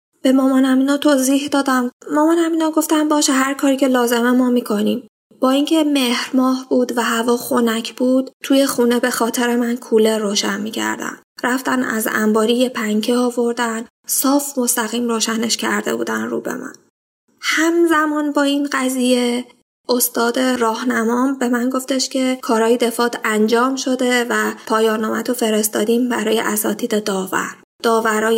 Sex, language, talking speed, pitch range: female, Persian, 140 wpm, 220-260 Hz